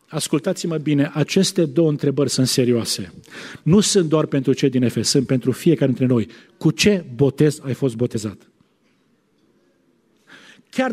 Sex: male